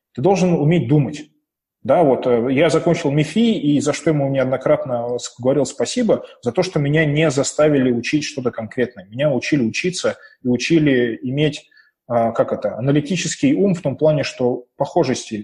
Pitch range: 130-170 Hz